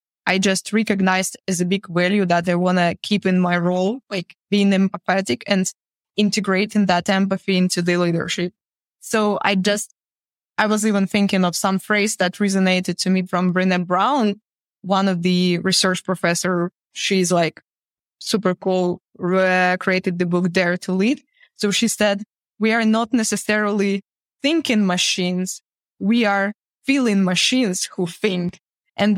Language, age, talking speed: English, 20-39, 150 wpm